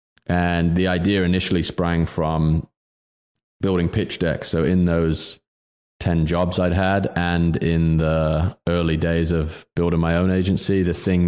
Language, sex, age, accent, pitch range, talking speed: English, male, 20-39, British, 85-90 Hz, 150 wpm